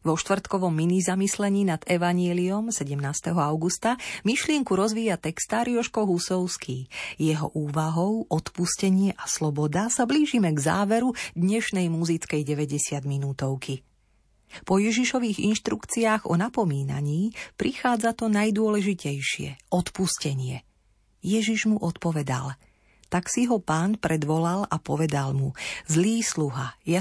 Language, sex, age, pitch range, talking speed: Slovak, female, 40-59, 155-205 Hz, 110 wpm